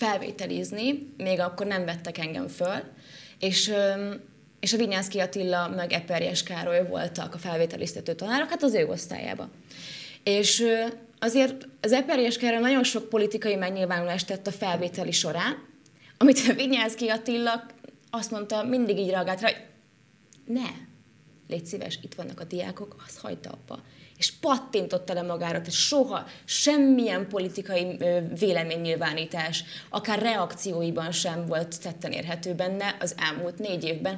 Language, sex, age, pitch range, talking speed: Hungarian, female, 20-39, 175-225 Hz, 135 wpm